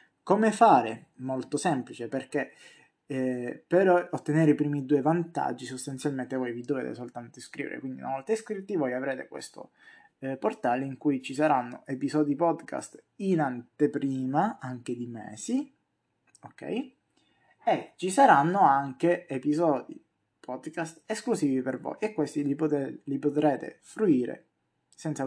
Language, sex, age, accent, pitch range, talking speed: Italian, male, 20-39, native, 130-160 Hz, 135 wpm